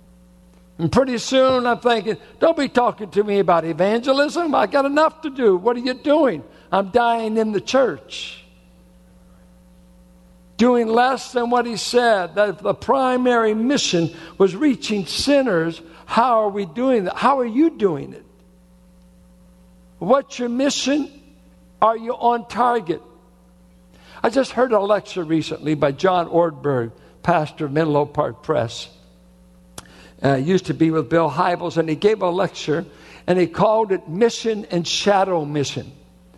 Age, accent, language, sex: 60-79, American, English, male